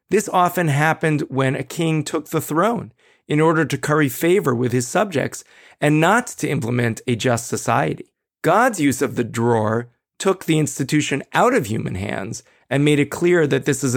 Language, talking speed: English, 185 wpm